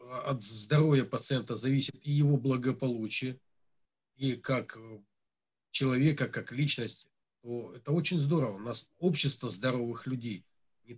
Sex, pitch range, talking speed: male, 120-145 Hz, 120 wpm